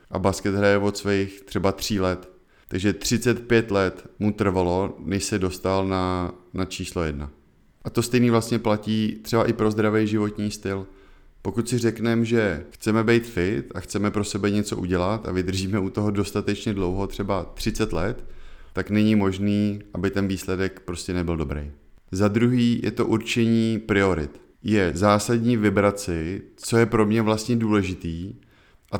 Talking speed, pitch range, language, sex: 160 wpm, 90-115 Hz, Czech, male